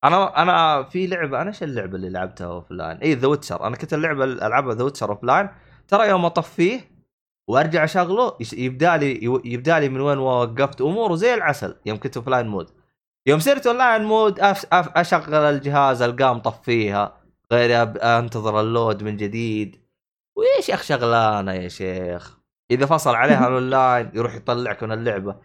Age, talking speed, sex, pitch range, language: 20-39, 155 wpm, male, 110-165 Hz, Arabic